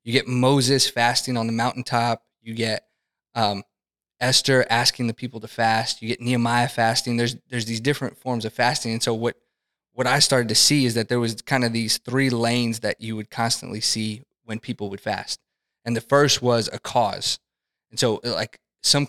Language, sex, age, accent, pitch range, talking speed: English, male, 20-39, American, 115-125 Hz, 200 wpm